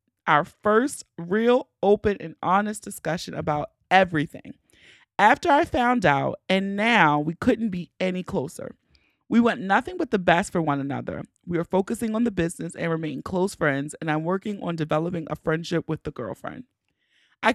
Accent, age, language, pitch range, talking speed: American, 30-49, English, 155-210 Hz, 170 wpm